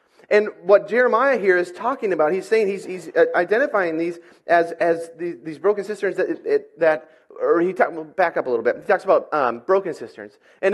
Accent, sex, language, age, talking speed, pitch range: American, male, English, 30-49, 205 wpm, 165-265 Hz